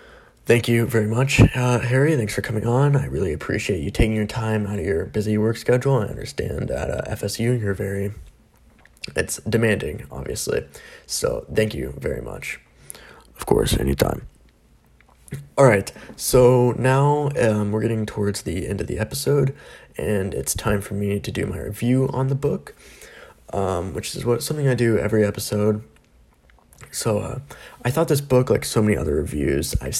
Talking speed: 175 wpm